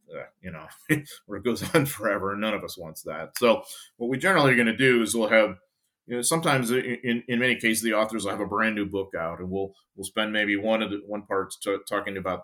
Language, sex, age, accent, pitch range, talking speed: English, male, 30-49, American, 100-120 Hz, 260 wpm